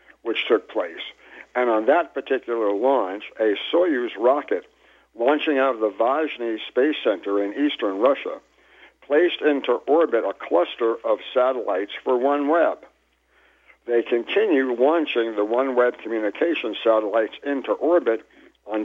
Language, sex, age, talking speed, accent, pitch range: English, male, 60-79, 125 wpm, American, 115-165 Hz